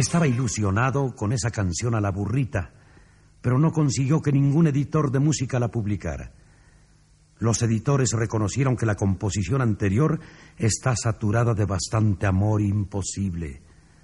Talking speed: 135 wpm